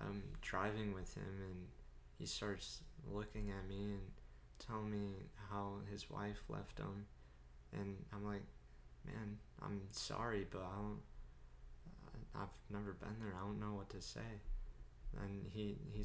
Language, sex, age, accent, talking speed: English, male, 20-39, American, 150 wpm